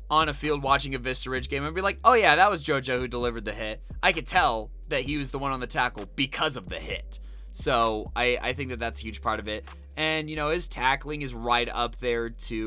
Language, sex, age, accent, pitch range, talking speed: English, male, 20-39, American, 115-140 Hz, 265 wpm